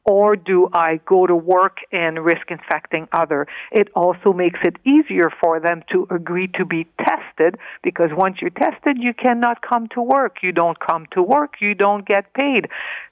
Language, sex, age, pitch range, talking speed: English, female, 60-79, 175-215 Hz, 185 wpm